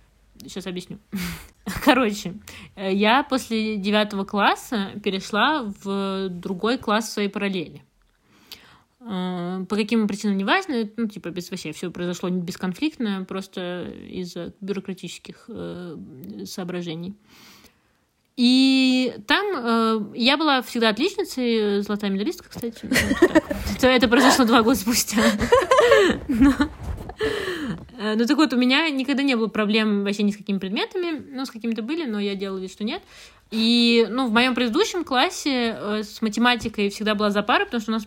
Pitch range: 190-250 Hz